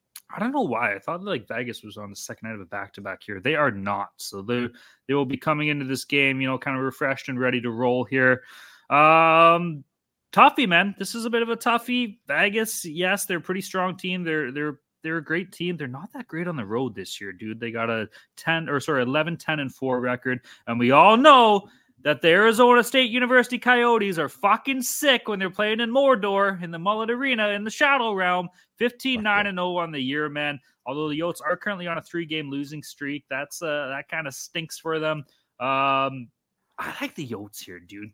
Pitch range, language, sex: 130-200 Hz, English, male